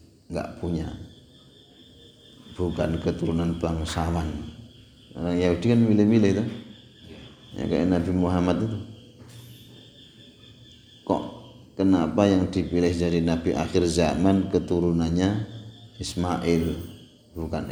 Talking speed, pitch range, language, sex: 85 wpm, 85-105 Hz, Indonesian, male